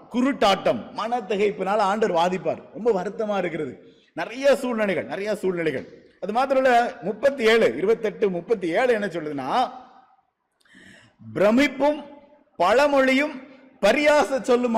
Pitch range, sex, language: 200-265 Hz, male, Tamil